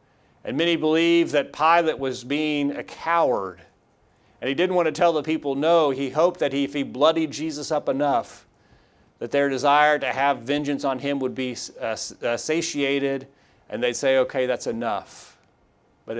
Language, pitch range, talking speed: English, 120-150 Hz, 175 wpm